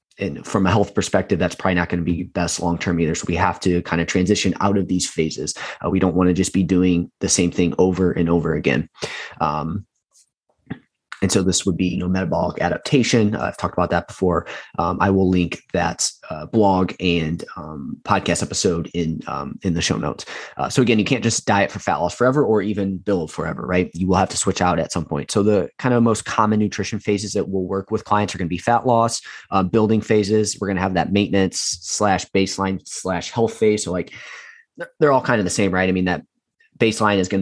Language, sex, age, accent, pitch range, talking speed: English, male, 20-39, American, 90-105 Hz, 235 wpm